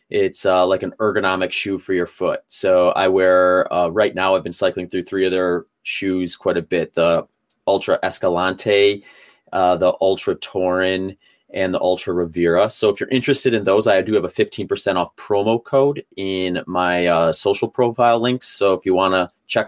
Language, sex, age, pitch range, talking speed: English, male, 30-49, 90-110 Hz, 190 wpm